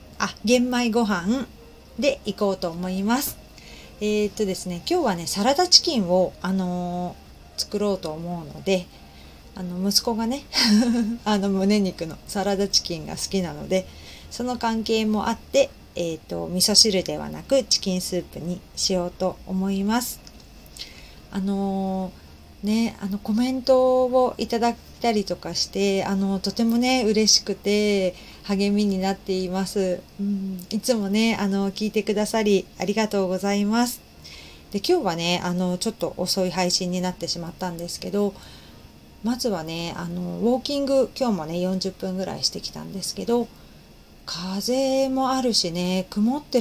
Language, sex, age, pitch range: Japanese, female, 40-59, 180-225 Hz